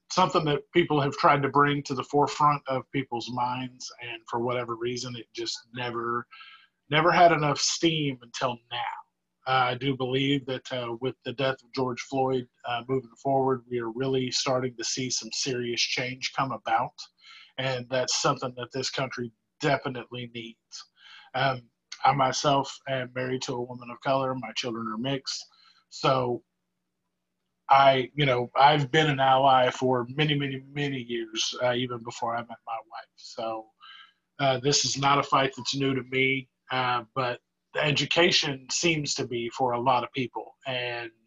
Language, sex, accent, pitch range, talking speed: English, male, American, 120-135 Hz, 170 wpm